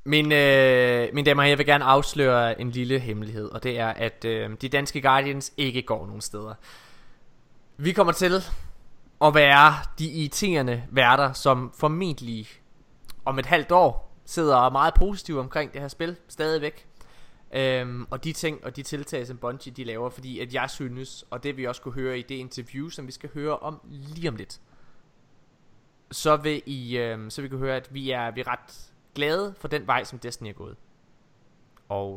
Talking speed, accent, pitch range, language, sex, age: 190 wpm, native, 120-150 Hz, Danish, male, 20-39